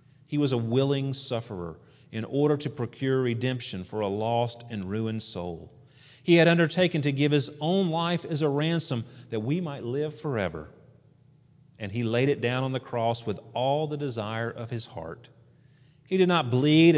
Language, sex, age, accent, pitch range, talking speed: English, male, 40-59, American, 110-145 Hz, 180 wpm